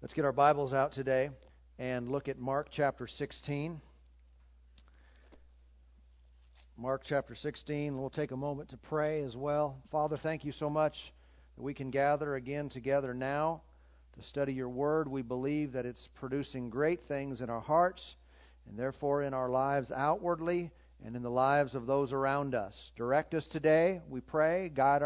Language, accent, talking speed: English, American, 165 wpm